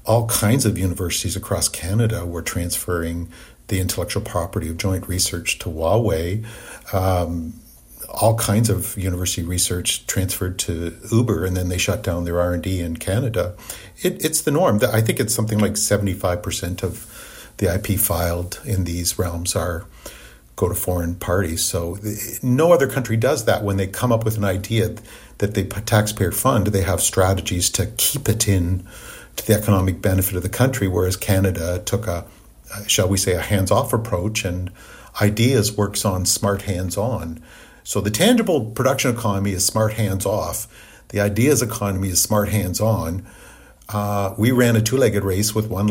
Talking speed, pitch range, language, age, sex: 165 wpm, 90-110 Hz, English, 50-69, male